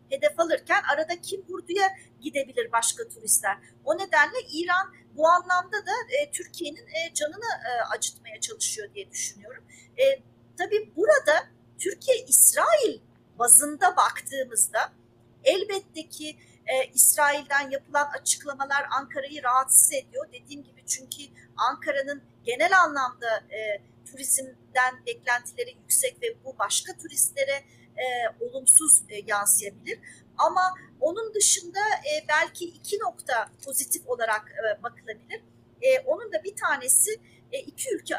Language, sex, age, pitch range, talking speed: Turkish, female, 40-59, 275-375 Hz, 110 wpm